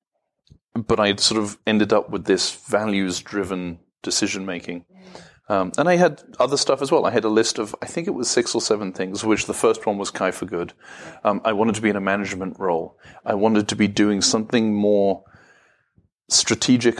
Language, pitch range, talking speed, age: English, 95-110 Hz, 200 wpm, 30-49